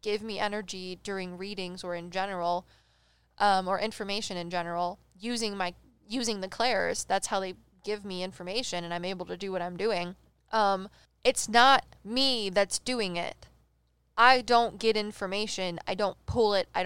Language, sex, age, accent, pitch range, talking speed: English, female, 10-29, American, 185-225 Hz, 170 wpm